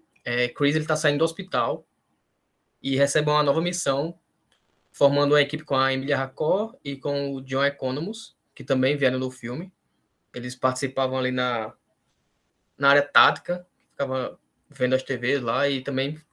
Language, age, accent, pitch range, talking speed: Portuguese, 20-39, Brazilian, 130-150 Hz, 155 wpm